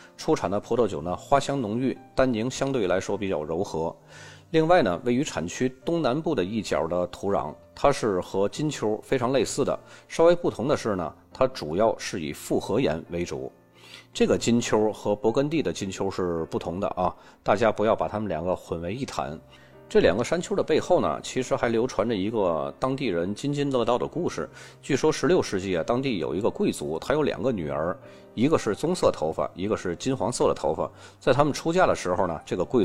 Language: Chinese